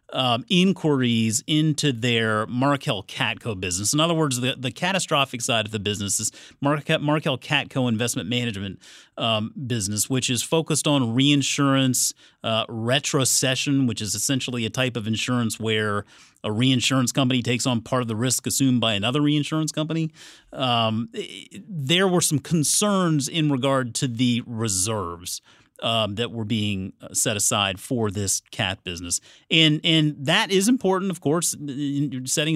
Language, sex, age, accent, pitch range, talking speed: English, male, 40-59, American, 110-150 Hz, 145 wpm